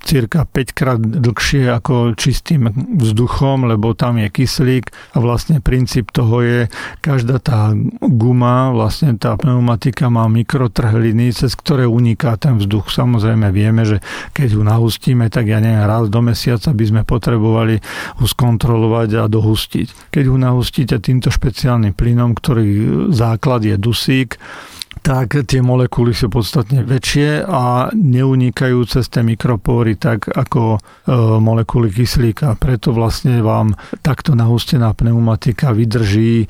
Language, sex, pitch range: Slovak, male, 110-130 Hz